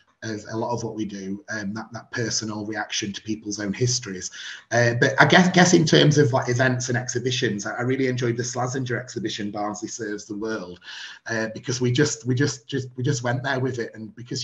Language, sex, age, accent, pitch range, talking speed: English, male, 30-49, British, 115-135 Hz, 225 wpm